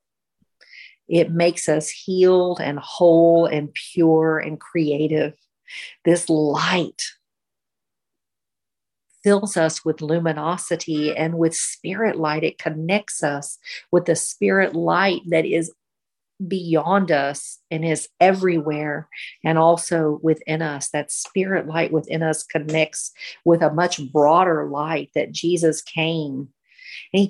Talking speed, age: 115 wpm, 50-69